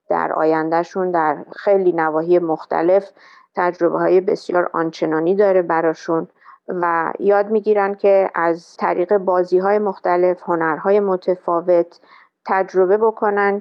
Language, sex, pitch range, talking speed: Persian, female, 170-195 Hz, 110 wpm